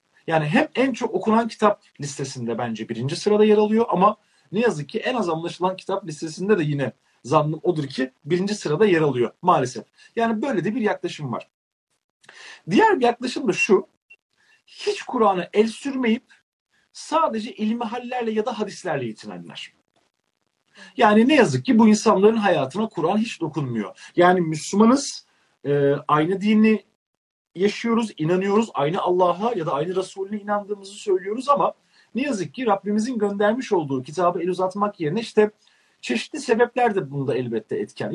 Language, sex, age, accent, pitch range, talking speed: Turkish, male, 40-59, native, 160-225 Hz, 150 wpm